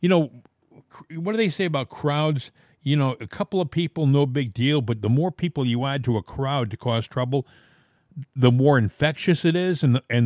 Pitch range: 125-175 Hz